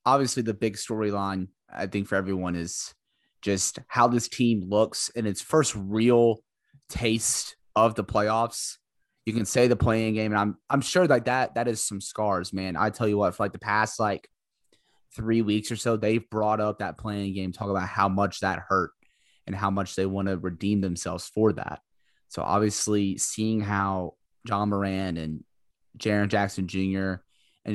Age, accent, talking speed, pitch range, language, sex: 20-39, American, 185 wpm, 95-115 Hz, English, male